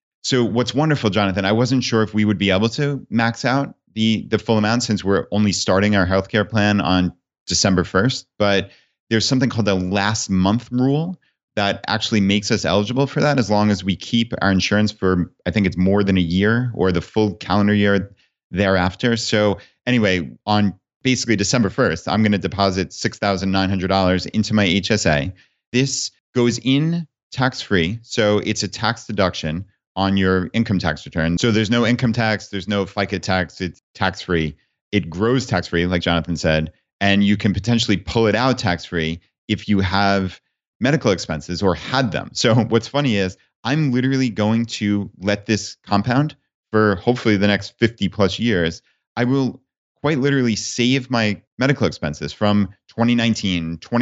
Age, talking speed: 30-49, 170 wpm